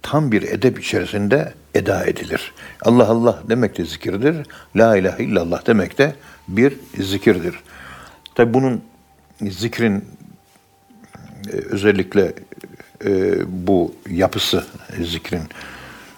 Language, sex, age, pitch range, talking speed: Turkish, male, 60-79, 95-120 Hz, 95 wpm